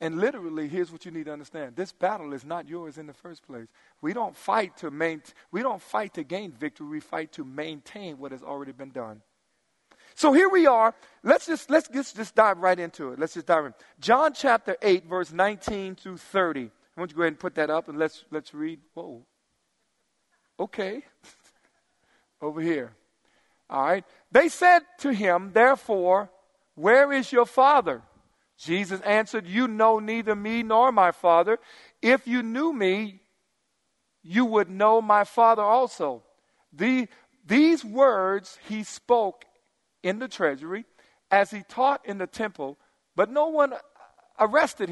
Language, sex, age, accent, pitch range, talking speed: English, male, 50-69, American, 170-250 Hz, 170 wpm